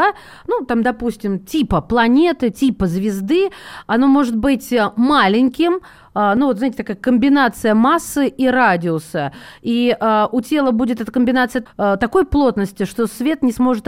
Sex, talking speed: female, 135 wpm